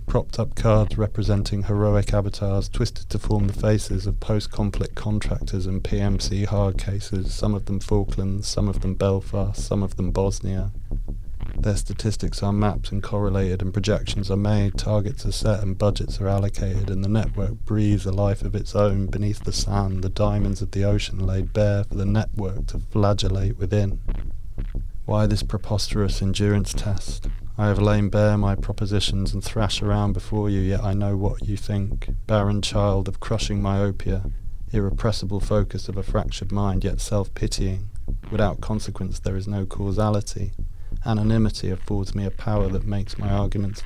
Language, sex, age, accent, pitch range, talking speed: English, male, 30-49, British, 95-105 Hz, 165 wpm